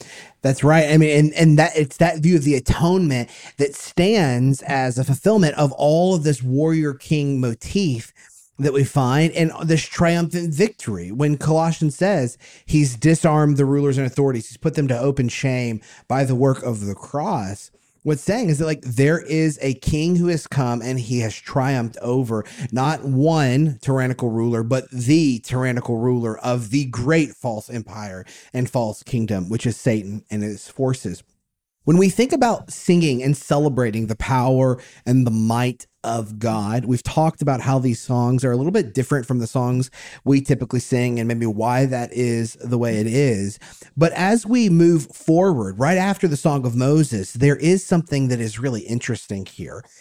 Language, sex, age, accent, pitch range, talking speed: English, male, 30-49, American, 120-155 Hz, 180 wpm